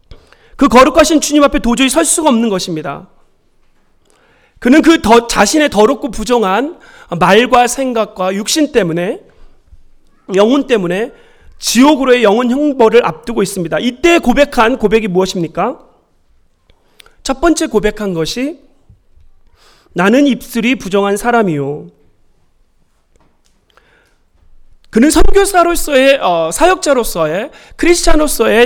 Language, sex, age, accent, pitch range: Korean, male, 40-59, native, 185-270 Hz